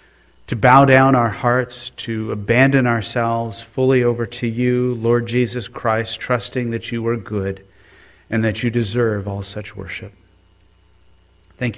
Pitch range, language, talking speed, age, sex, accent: 105-125 Hz, English, 145 wpm, 40-59, male, American